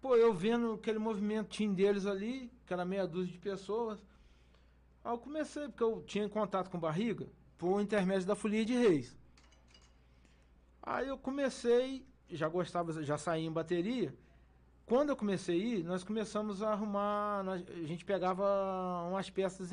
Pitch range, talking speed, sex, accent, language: 175-240 Hz, 160 wpm, male, Brazilian, Portuguese